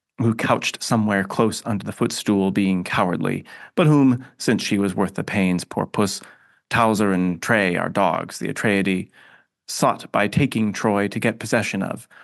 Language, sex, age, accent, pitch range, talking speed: English, male, 30-49, American, 100-130 Hz, 165 wpm